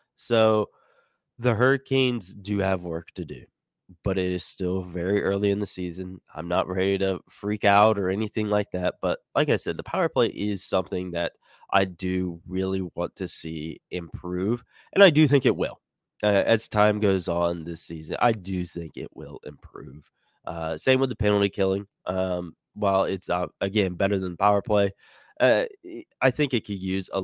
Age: 20-39